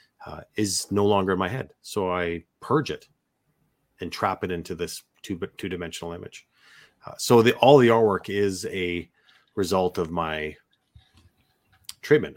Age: 30-49